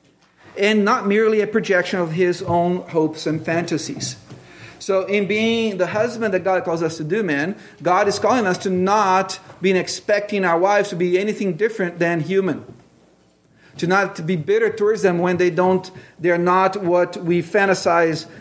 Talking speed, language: 175 wpm, English